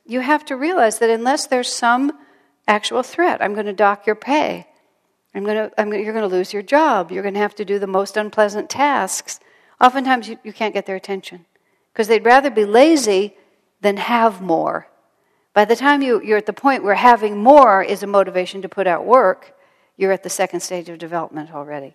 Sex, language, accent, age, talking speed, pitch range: female, English, American, 60-79, 215 wpm, 175-235 Hz